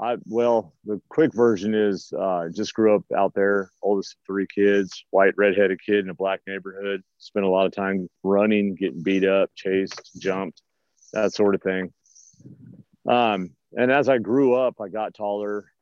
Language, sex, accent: English, male, American